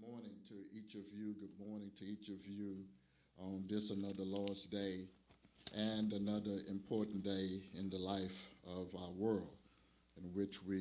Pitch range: 90-105 Hz